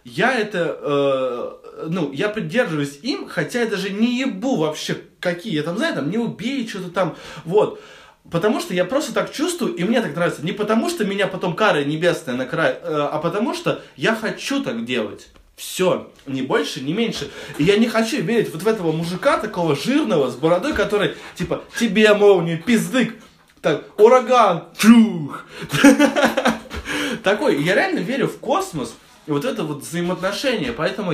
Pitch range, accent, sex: 145-230 Hz, native, male